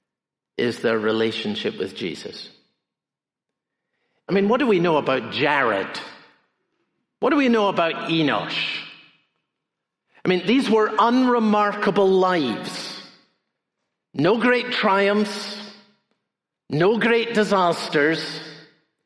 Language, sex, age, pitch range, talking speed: English, male, 50-69, 155-200 Hz, 100 wpm